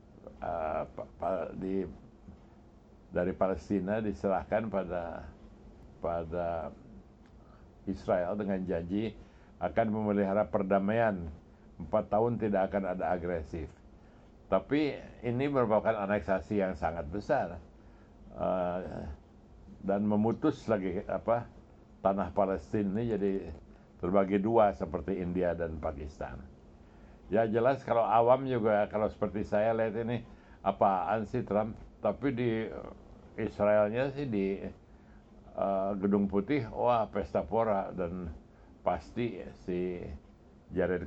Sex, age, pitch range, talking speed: male, 60-79, 90-110 Hz, 100 wpm